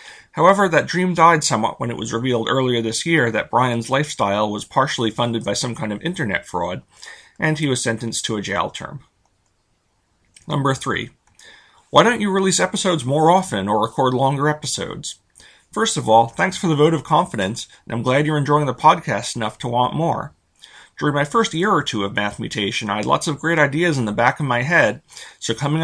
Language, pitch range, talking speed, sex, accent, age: English, 110-155 Hz, 205 wpm, male, American, 40-59